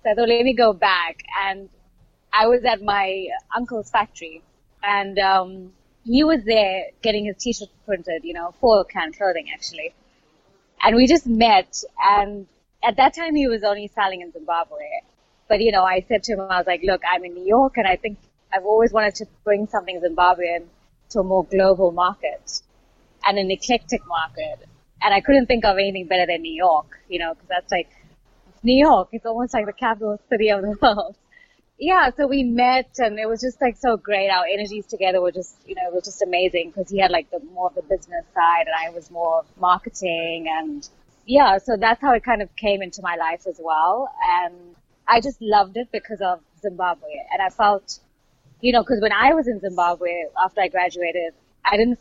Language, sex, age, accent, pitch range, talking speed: English, female, 20-39, Indian, 180-235 Hz, 205 wpm